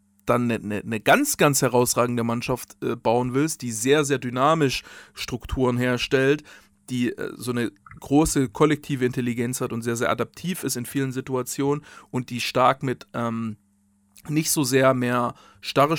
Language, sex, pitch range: German, male, 120-145 Hz